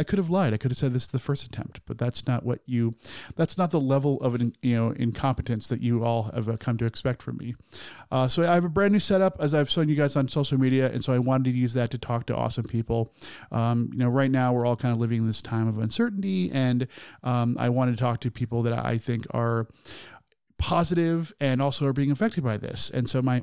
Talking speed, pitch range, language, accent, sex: 260 wpm, 115-135 Hz, English, American, male